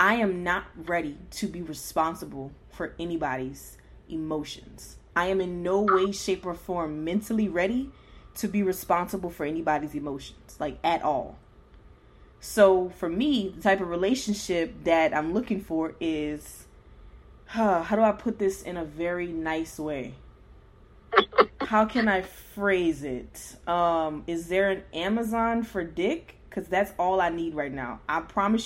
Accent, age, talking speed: American, 20-39, 150 wpm